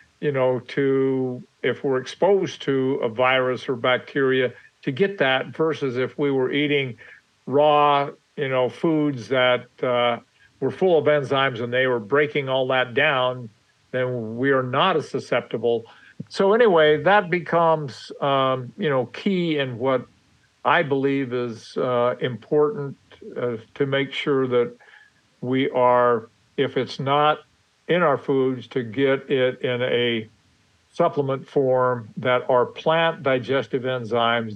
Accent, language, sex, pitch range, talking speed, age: American, English, male, 125-140 Hz, 140 wpm, 50-69